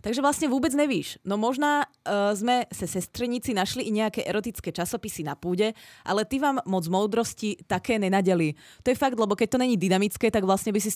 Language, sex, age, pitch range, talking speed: Czech, female, 20-39, 175-240 Hz, 205 wpm